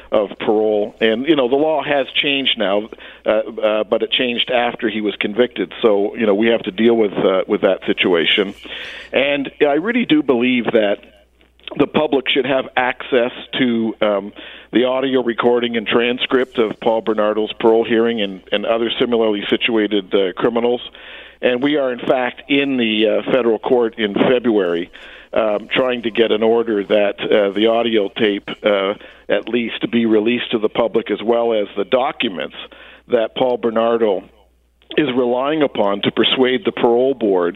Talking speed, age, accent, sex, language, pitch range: 175 wpm, 50-69, American, male, English, 110-125 Hz